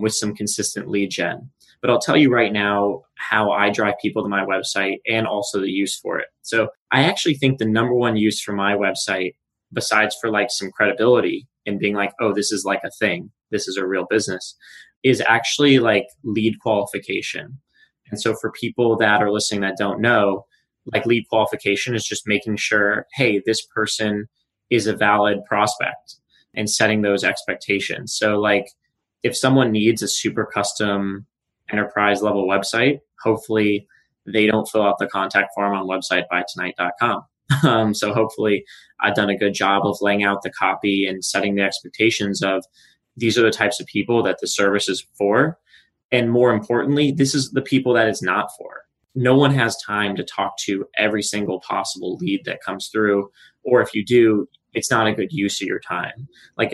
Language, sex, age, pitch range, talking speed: English, male, 20-39, 100-115 Hz, 185 wpm